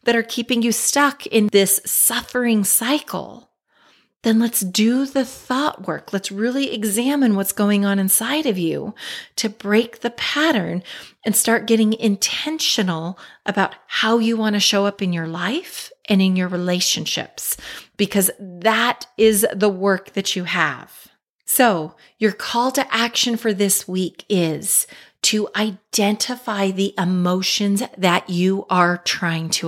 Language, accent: English, American